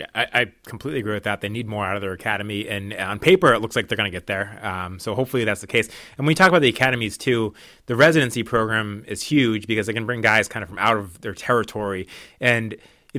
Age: 30-49